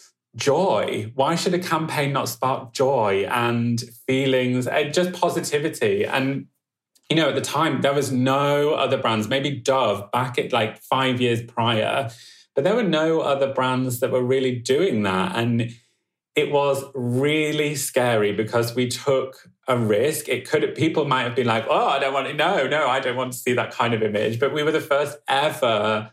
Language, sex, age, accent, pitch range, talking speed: English, male, 30-49, British, 110-130 Hz, 190 wpm